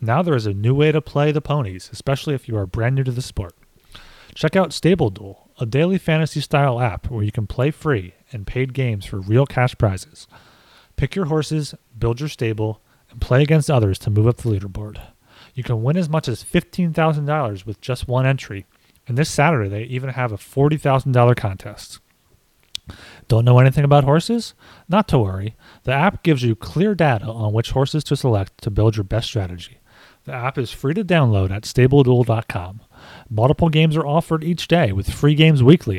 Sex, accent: male, American